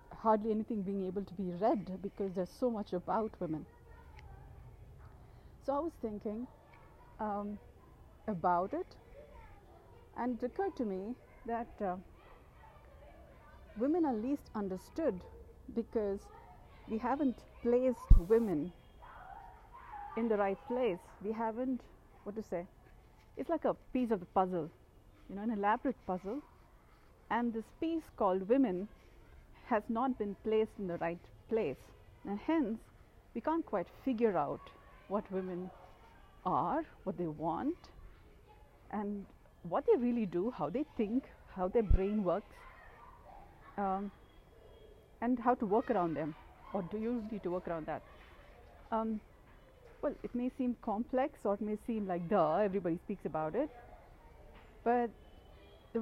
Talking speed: 135 wpm